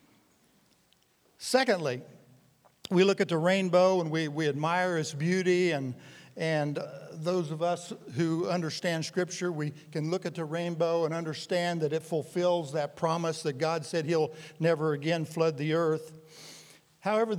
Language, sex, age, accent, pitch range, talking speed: English, male, 60-79, American, 150-175 Hz, 150 wpm